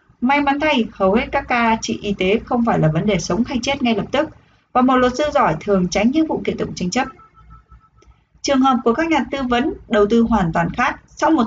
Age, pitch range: 20-39, 205-280 Hz